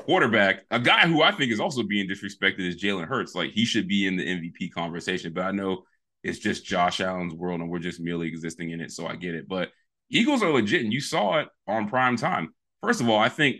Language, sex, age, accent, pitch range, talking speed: English, male, 30-49, American, 90-120 Hz, 245 wpm